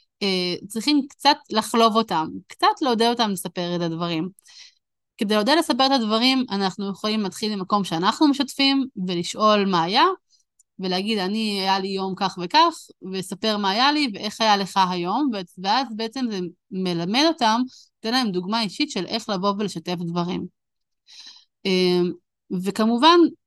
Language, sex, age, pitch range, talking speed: Hebrew, female, 20-39, 185-260 Hz, 140 wpm